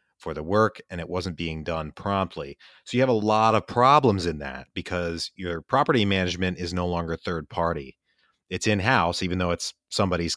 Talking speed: 195 wpm